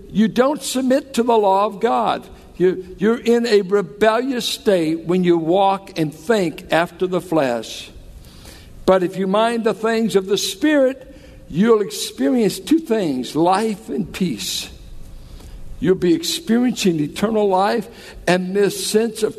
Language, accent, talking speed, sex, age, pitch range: English, American, 140 wpm, male, 60-79, 165-220 Hz